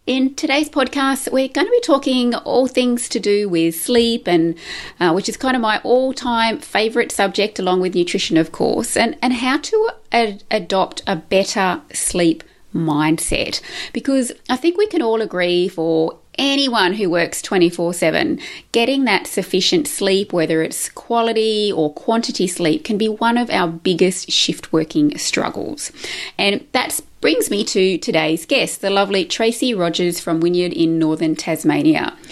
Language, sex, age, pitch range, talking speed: English, female, 30-49, 175-255 Hz, 160 wpm